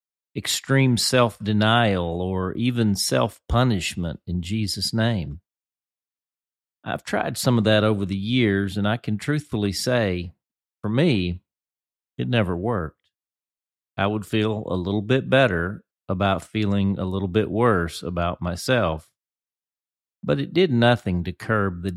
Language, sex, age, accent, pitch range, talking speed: English, male, 40-59, American, 85-120 Hz, 130 wpm